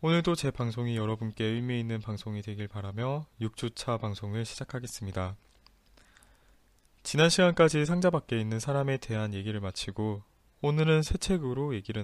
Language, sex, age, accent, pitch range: Korean, male, 20-39, native, 105-145 Hz